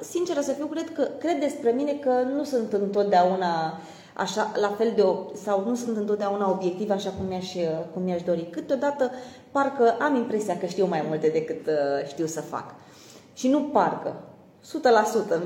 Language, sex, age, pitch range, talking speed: Romanian, female, 20-39, 195-275 Hz, 165 wpm